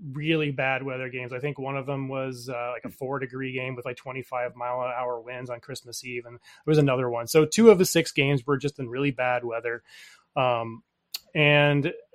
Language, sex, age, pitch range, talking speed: English, male, 30-49, 130-160 Hz, 220 wpm